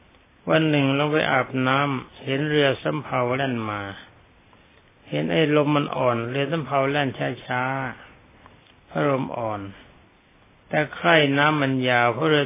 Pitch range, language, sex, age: 110-145 Hz, Thai, male, 60-79